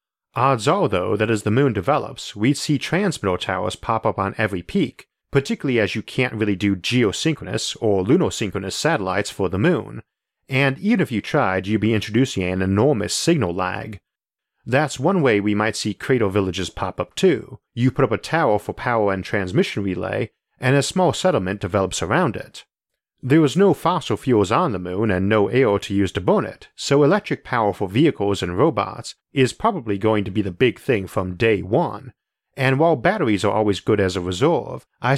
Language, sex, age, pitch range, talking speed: English, male, 40-59, 100-135 Hz, 195 wpm